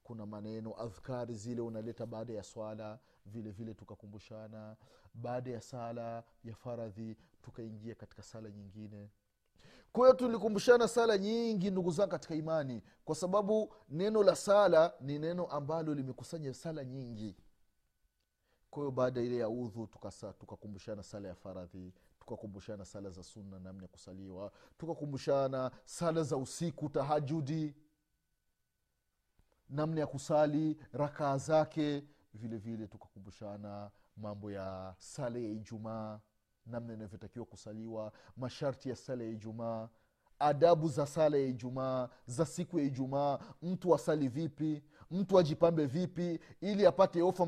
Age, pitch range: 30-49, 105-150 Hz